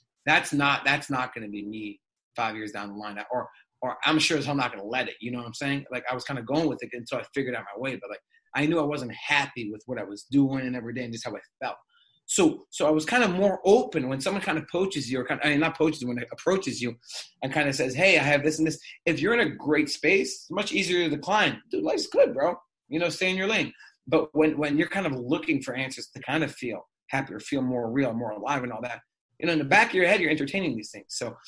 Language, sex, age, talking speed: English, male, 30-49, 295 wpm